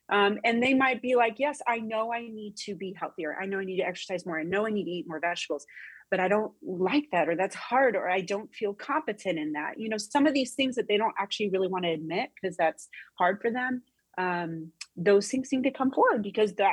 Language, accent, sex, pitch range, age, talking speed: English, American, female, 175-235 Hz, 30-49, 255 wpm